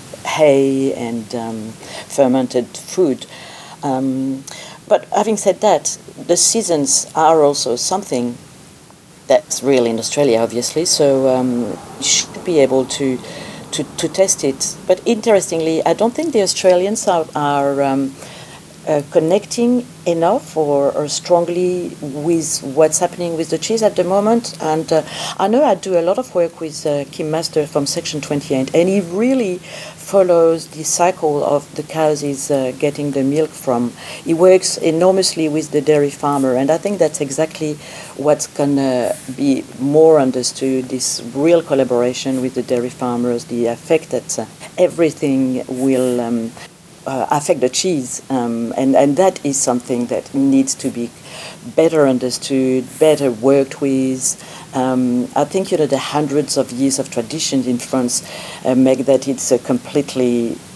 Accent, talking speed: French, 155 wpm